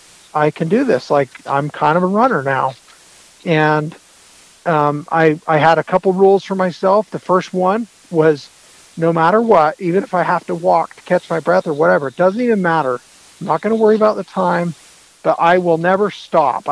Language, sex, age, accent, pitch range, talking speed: English, male, 40-59, American, 150-175 Hz, 205 wpm